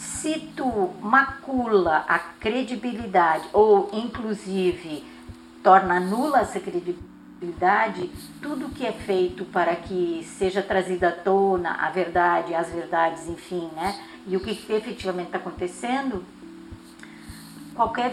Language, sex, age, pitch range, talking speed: Portuguese, female, 50-69, 175-225 Hz, 115 wpm